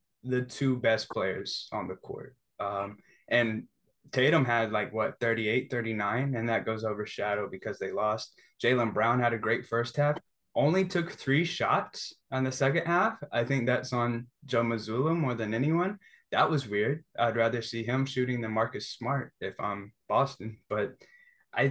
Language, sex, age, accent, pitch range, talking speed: English, male, 10-29, American, 115-135 Hz, 170 wpm